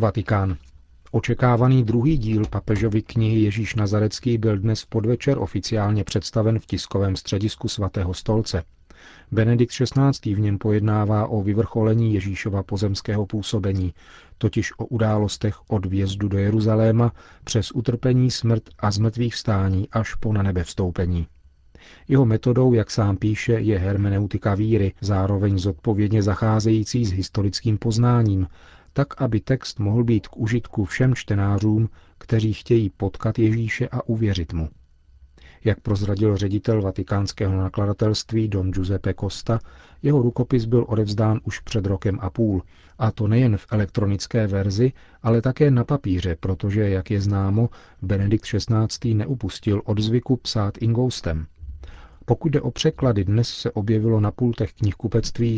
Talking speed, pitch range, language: 130 wpm, 100-115 Hz, Czech